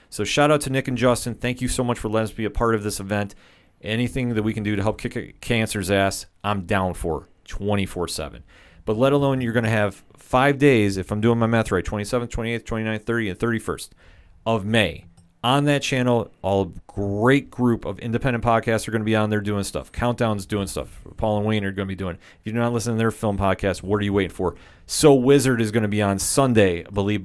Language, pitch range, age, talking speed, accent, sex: English, 95-120 Hz, 40-59, 240 wpm, American, male